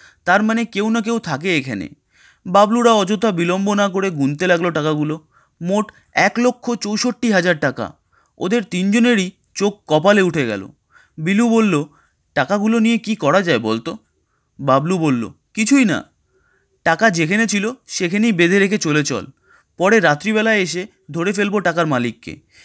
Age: 30-49